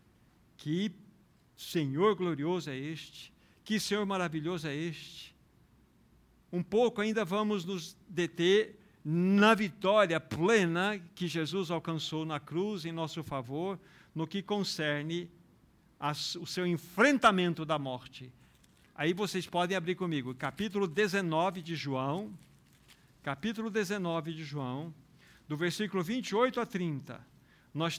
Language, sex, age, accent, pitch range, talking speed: Portuguese, male, 60-79, Brazilian, 160-205 Hz, 115 wpm